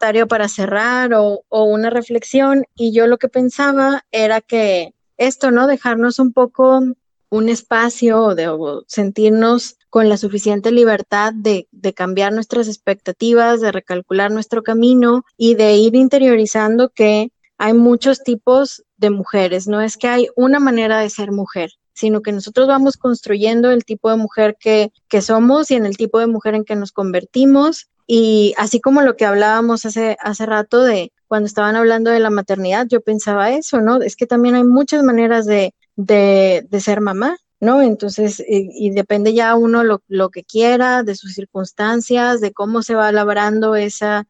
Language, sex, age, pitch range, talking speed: Spanish, female, 20-39, 205-240 Hz, 170 wpm